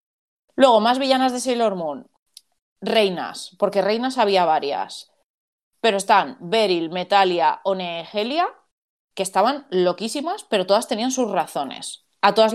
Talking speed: 125 wpm